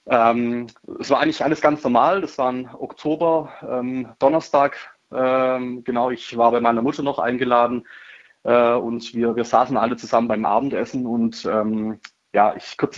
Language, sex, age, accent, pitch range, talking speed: German, male, 20-39, German, 115-135 Hz, 165 wpm